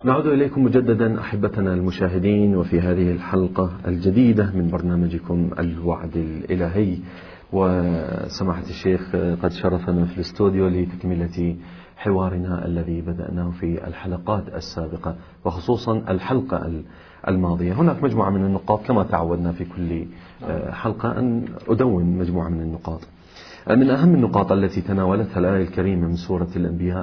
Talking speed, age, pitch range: 120 wpm, 40-59, 90-110 Hz